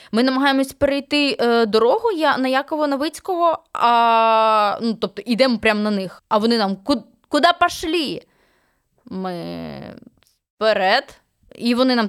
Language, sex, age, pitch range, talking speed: Ukrainian, female, 20-39, 205-280 Hz, 130 wpm